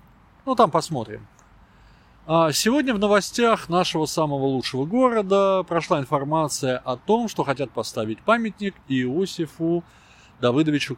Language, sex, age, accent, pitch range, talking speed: Russian, male, 20-39, native, 130-190 Hz, 110 wpm